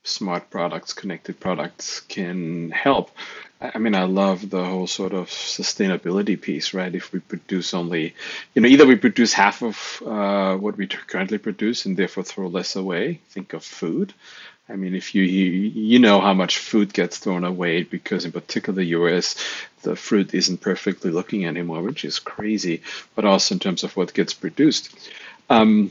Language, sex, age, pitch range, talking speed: English, male, 40-59, 95-115 Hz, 180 wpm